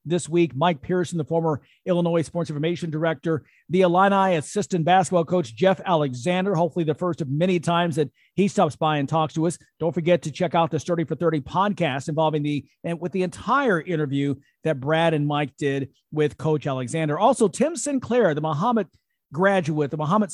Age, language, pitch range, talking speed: 40-59, English, 155-185 Hz, 190 wpm